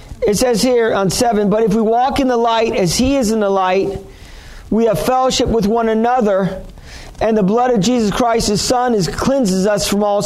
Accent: American